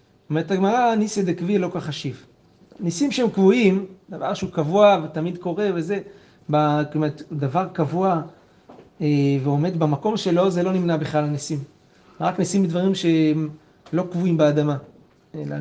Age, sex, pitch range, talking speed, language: 30-49, male, 150-180 Hz, 140 wpm, Hebrew